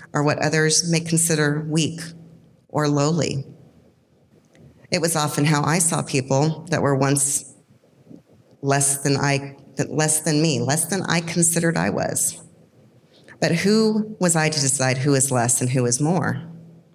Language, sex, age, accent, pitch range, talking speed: English, female, 40-59, American, 140-165 Hz, 150 wpm